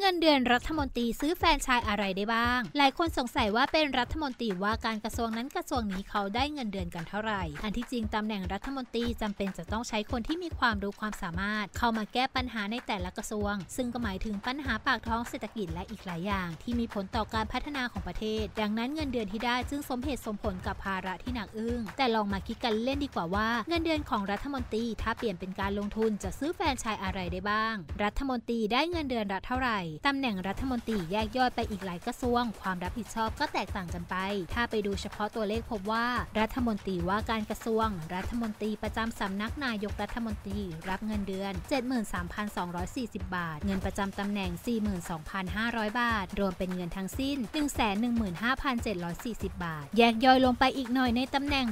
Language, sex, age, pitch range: English, female, 20-39, 205-250 Hz